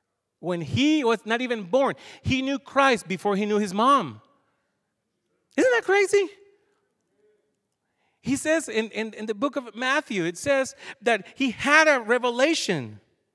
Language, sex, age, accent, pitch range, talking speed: English, male, 40-59, American, 215-285 Hz, 150 wpm